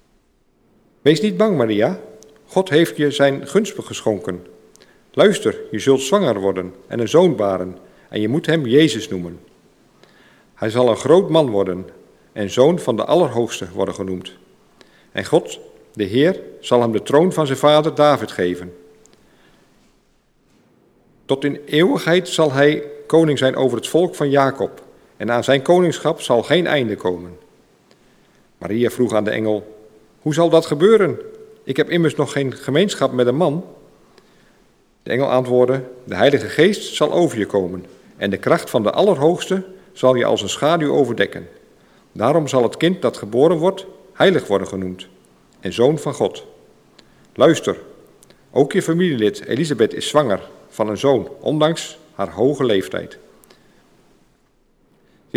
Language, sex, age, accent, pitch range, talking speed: Dutch, male, 50-69, Belgian, 105-160 Hz, 150 wpm